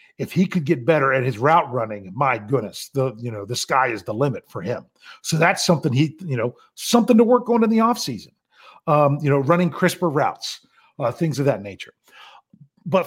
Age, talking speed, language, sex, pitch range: 40-59, 215 wpm, English, male, 130-200 Hz